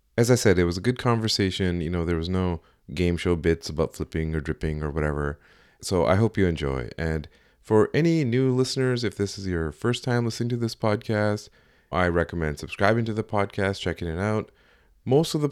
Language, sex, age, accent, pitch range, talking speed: English, male, 30-49, American, 80-105 Hz, 210 wpm